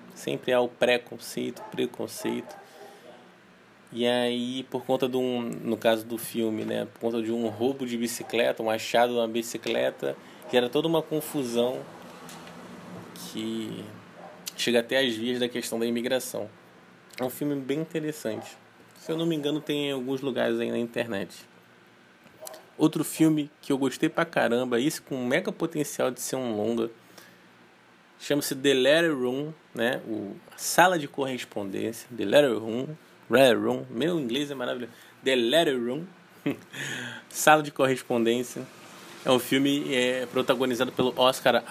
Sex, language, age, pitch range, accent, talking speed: male, Portuguese, 20-39, 115-140 Hz, Brazilian, 150 wpm